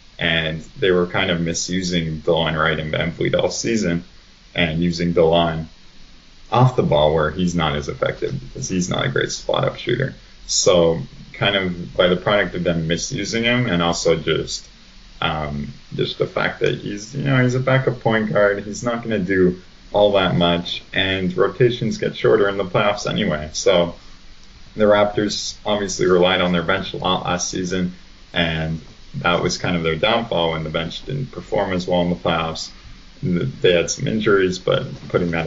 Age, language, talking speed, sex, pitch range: 20-39, English, 185 wpm, male, 85-100 Hz